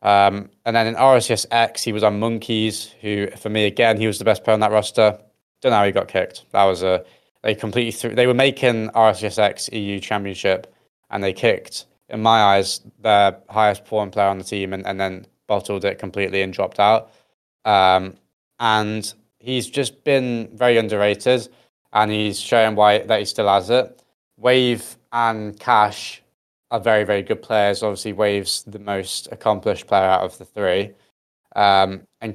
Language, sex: English, male